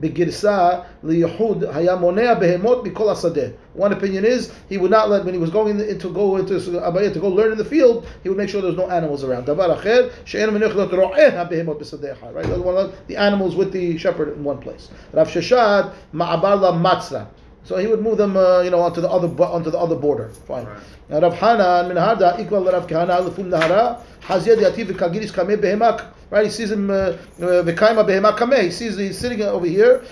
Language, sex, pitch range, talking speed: English, male, 170-215 Hz, 135 wpm